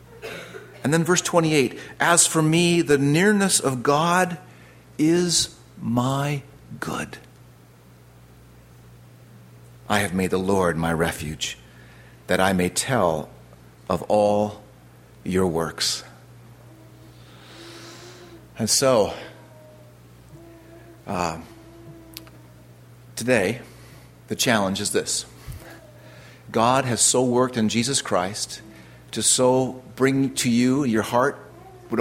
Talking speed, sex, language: 95 wpm, male, English